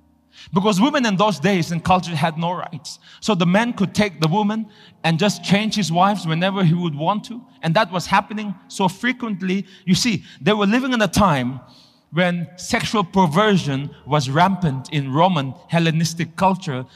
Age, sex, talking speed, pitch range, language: 30-49, male, 175 wpm, 165-215 Hz, English